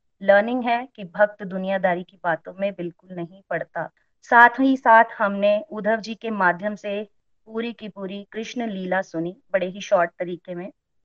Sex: female